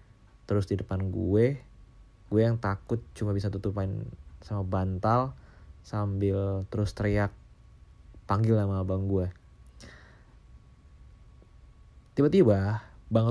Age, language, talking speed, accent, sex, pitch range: 30-49, Indonesian, 95 wpm, native, male, 95-115 Hz